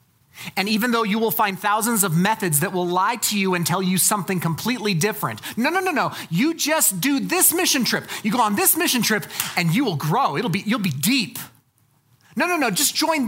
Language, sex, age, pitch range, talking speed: English, male, 30-49, 125-190 Hz, 225 wpm